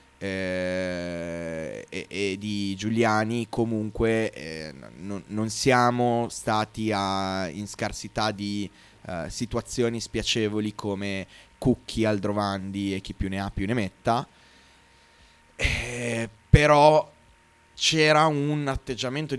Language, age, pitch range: Italian, 20-39, 100-115 Hz